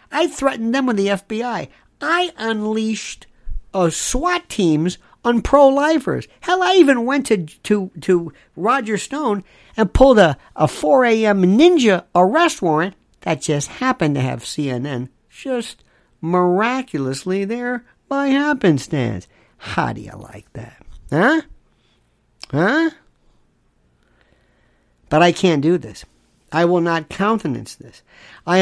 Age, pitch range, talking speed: 50-69, 155-245 Hz, 120 wpm